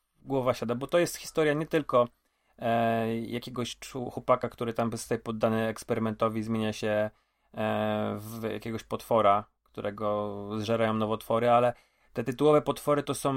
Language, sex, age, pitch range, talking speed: Polish, male, 30-49, 110-125 Hz, 140 wpm